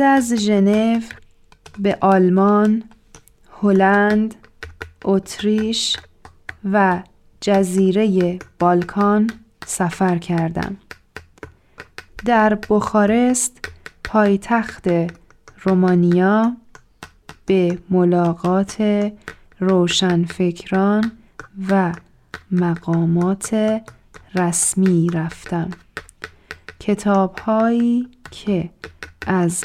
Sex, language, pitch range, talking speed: female, Persian, 175-210 Hz, 50 wpm